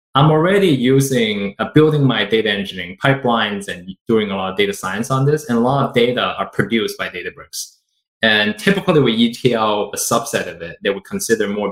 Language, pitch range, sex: English, 110-160 Hz, male